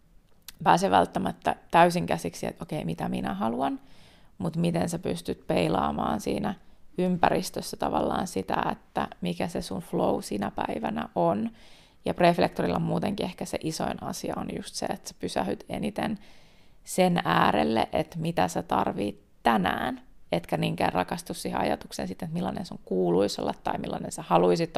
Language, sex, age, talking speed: Finnish, female, 30-49, 150 wpm